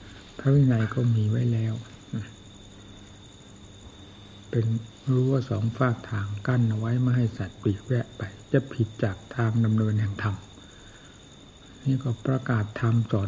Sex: male